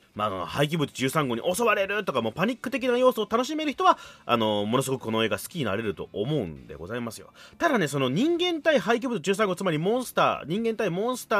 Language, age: Japanese, 30-49